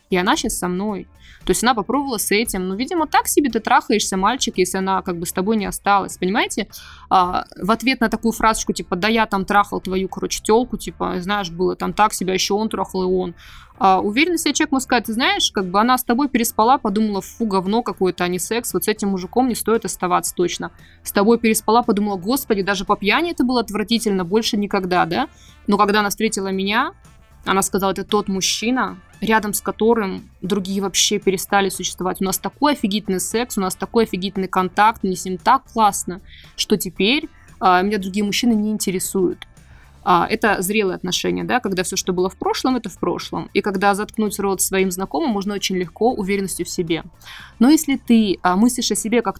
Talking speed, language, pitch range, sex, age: 205 wpm, Russian, 190-225 Hz, female, 20-39